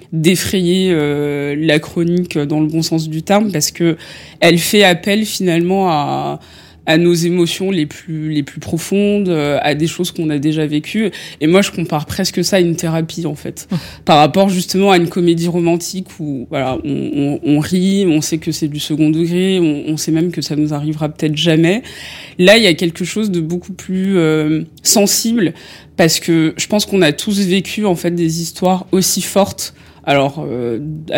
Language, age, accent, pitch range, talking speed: French, 20-39, French, 155-185 Hz, 190 wpm